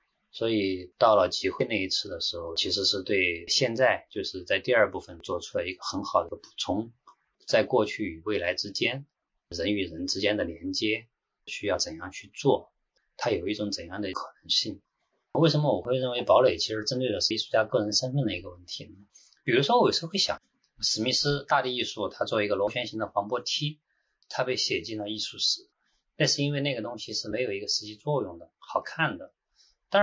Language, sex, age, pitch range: Chinese, male, 20-39, 105-150 Hz